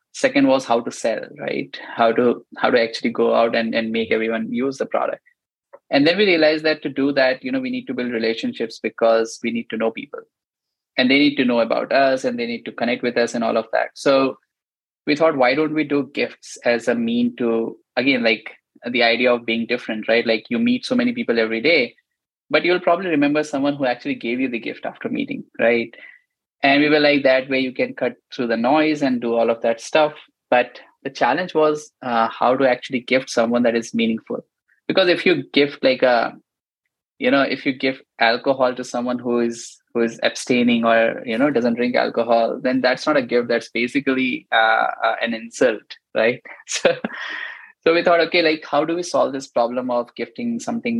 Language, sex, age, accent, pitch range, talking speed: English, male, 20-39, Indian, 115-155 Hz, 215 wpm